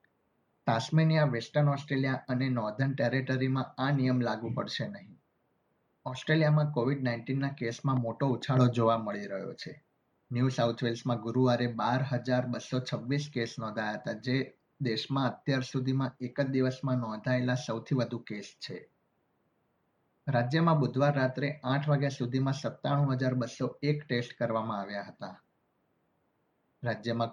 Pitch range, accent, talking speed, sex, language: 120-140 Hz, native, 115 wpm, male, Gujarati